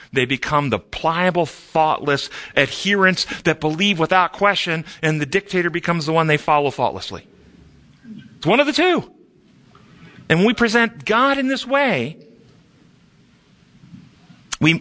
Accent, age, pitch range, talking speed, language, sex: American, 40-59, 110-170 Hz, 135 wpm, English, male